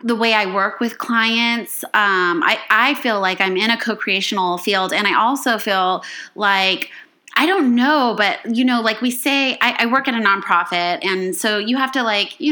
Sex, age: female, 20-39